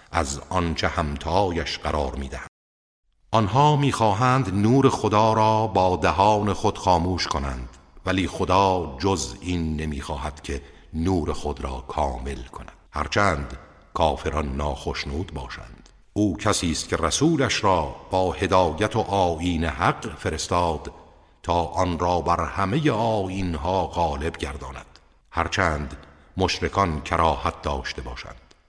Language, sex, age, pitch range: Persian, male, 60-79, 75-95 Hz